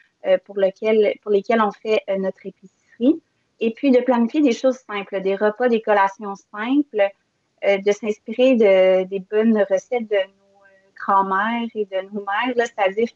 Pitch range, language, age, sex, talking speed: 195-230 Hz, French, 30-49, female, 155 wpm